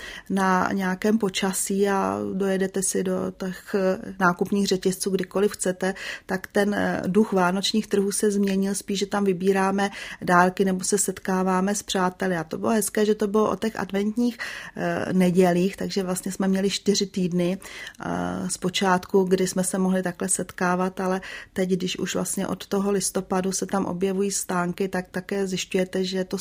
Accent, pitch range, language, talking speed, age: native, 185-205 Hz, Czech, 160 wpm, 30-49